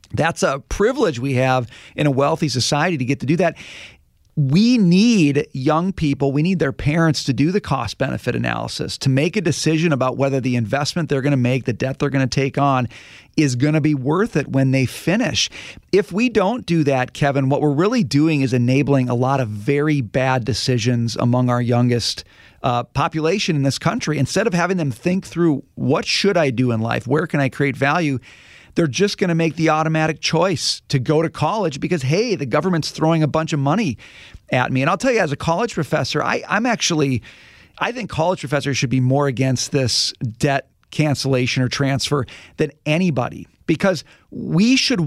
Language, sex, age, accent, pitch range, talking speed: English, male, 40-59, American, 135-170 Hz, 200 wpm